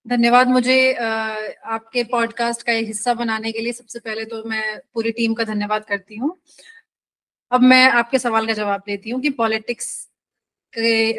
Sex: female